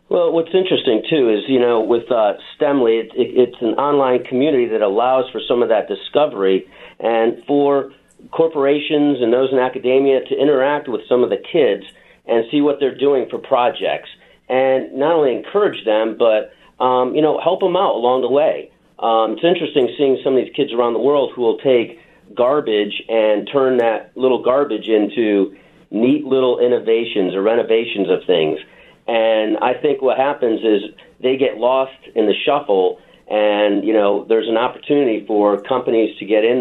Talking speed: 175 wpm